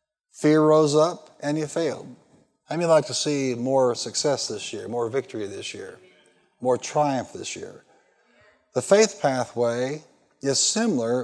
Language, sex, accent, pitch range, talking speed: English, male, American, 125-175 Hz, 155 wpm